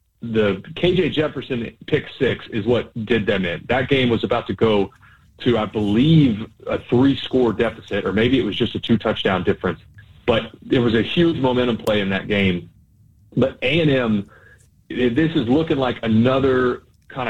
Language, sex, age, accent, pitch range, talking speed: English, male, 30-49, American, 105-130 Hz, 165 wpm